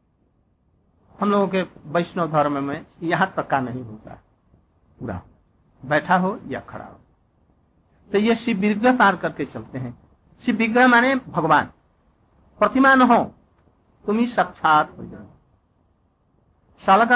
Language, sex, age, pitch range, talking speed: Hindi, male, 60-79, 140-200 Hz, 115 wpm